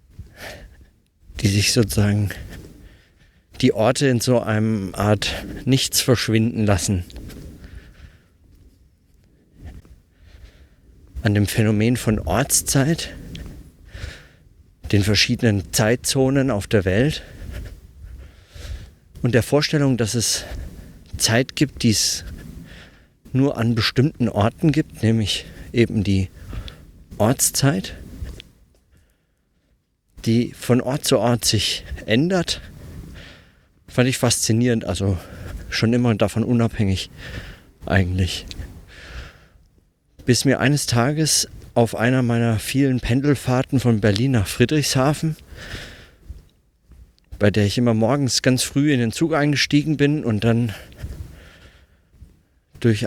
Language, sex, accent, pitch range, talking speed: German, male, German, 90-125 Hz, 95 wpm